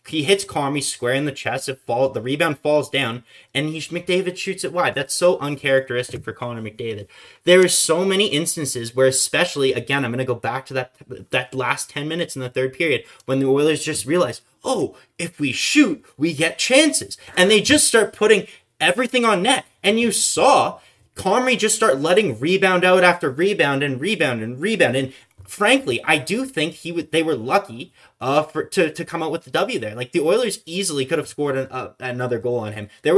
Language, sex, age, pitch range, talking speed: English, male, 20-39, 130-190 Hz, 210 wpm